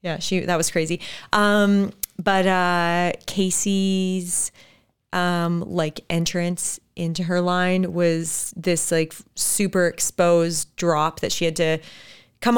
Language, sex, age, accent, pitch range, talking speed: English, female, 30-49, American, 160-185 Hz, 125 wpm